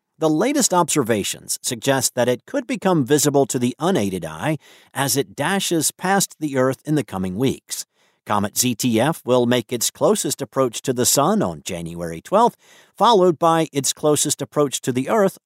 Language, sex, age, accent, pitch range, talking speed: English, male, 50-69, American, 125-175 Hz, 170 wpm